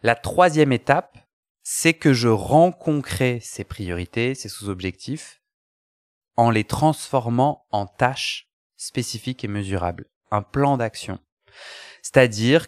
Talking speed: 115 wpm